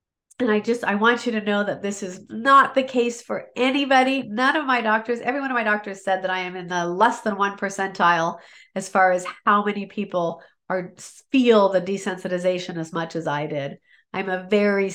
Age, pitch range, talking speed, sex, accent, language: 40-59, 175-220 Hz, 215 wpm, female, American, English